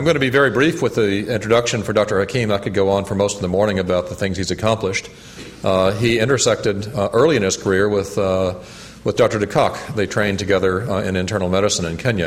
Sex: male